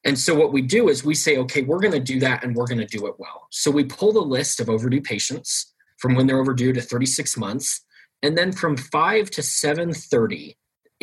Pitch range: 120-155 Hz